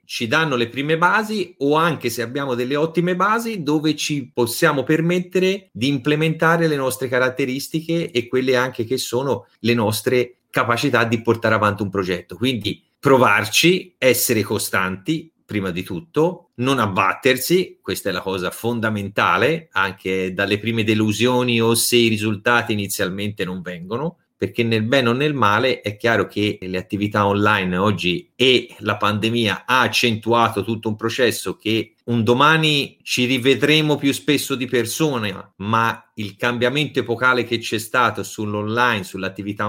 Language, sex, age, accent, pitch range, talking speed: Italian, male, 30-49, native, 105-135 Hz, 150 wpm